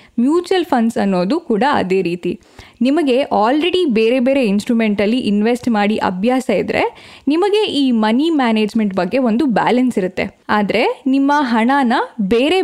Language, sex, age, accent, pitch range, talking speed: Kannada, female, 10-29, native, 215-285 Hz, 130 wpm